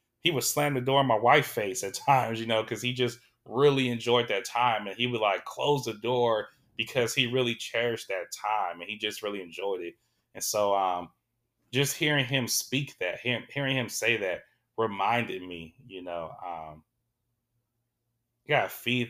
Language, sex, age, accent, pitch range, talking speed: English, male, 20-39, American, 110-125 Hz, 190 wpm